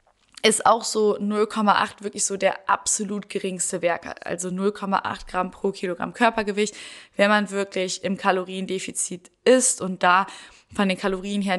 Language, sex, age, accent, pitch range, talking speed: German, female, 20-39, German, 185-235 Hz, 145 wpm